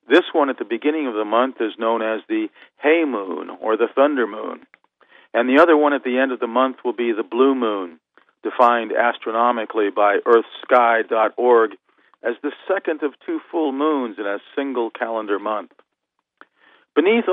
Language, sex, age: English, male, 50-69